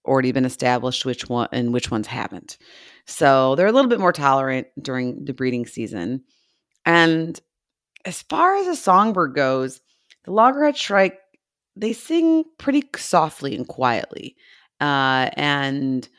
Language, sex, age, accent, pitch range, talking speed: English, female, 30-49, American, 130-160 Hz, 140 wpm